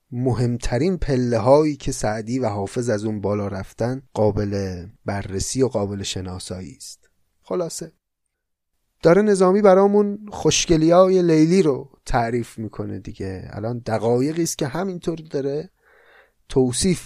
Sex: male